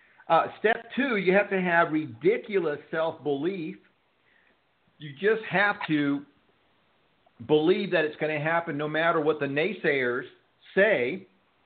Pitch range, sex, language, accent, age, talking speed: 150-180 Hz, male, English, American, 50-69, 130 wpm